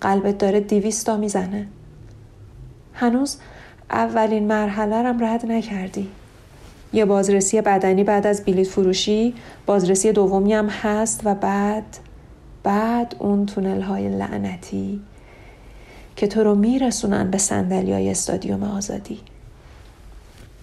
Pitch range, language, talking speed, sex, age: 190-225 Hz, Persian, 105 wpm, female, 40-59